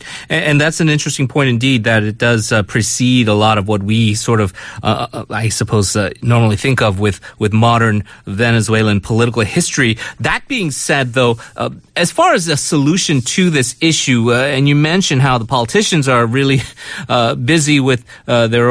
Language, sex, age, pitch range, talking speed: English, male, 30-49, 115-150 Hz, 190 wpm